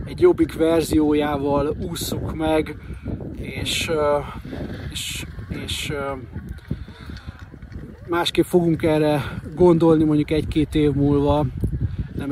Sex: male